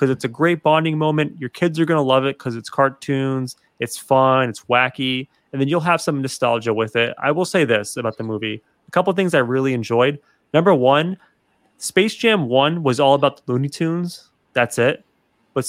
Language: English